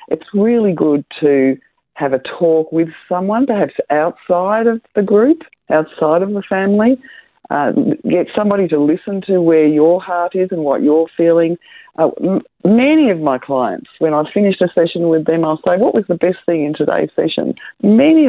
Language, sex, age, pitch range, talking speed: English, female, 50-69, 145-200 Hz, 180 wpm